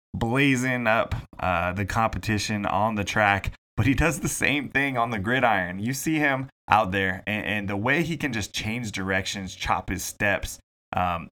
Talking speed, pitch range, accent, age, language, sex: 185 wpm, 95-120 Hz, American, 20-39, English, male